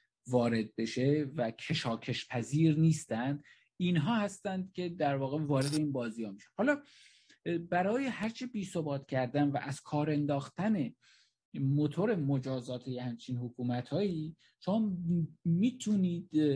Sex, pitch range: male, 125-170 Hz